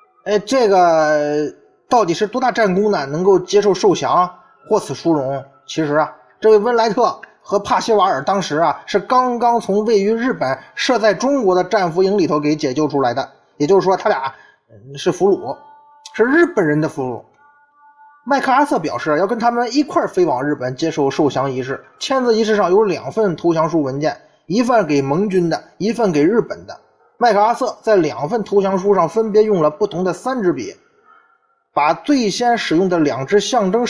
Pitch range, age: 155-255 Hz, 20-39